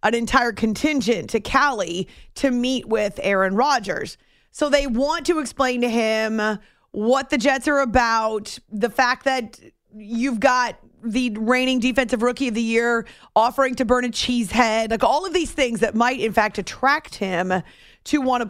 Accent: American